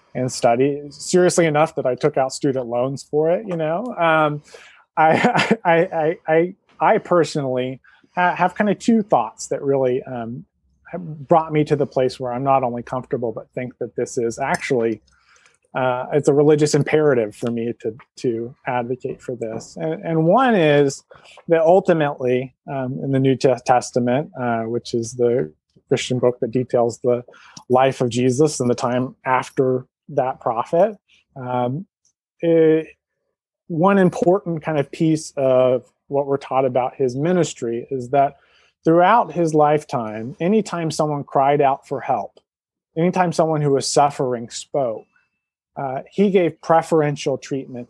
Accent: American